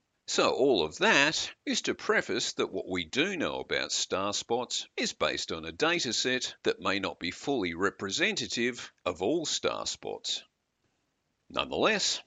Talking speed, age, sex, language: 155 wpm, 50-69, male, English